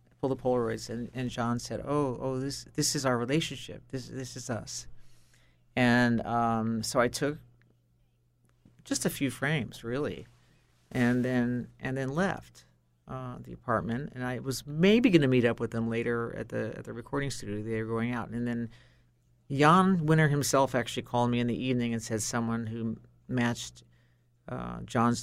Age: 40-59